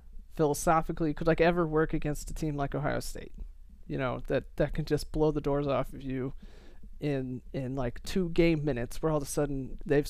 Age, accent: 30-49, American